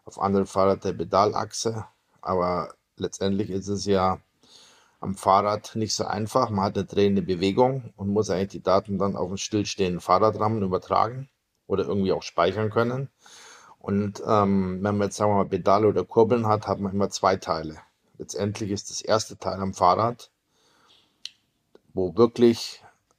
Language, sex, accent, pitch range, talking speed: German, male, German, 95-110 Hz, 160 wpm